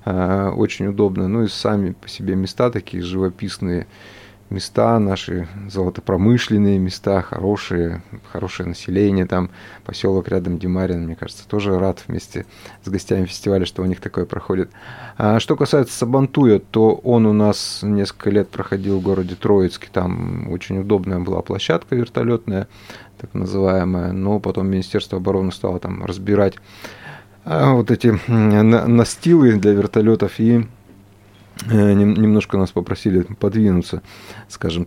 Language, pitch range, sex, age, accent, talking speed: Russian, 95-110 Hz, male, 30-49, native, 125 wpm